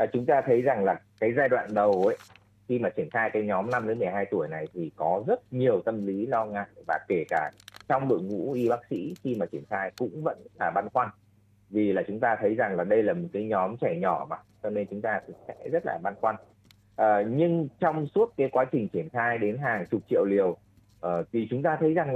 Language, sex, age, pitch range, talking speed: Vietnamese, male, 30-49, 105-150 Hz, 250 wpm